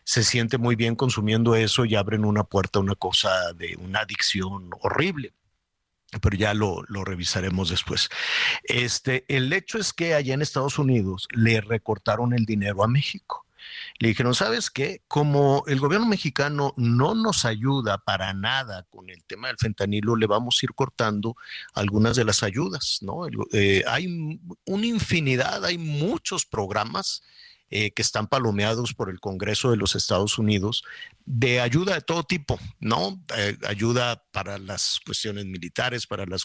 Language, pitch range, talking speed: Spanish, 100-135 Hz, 165 wpm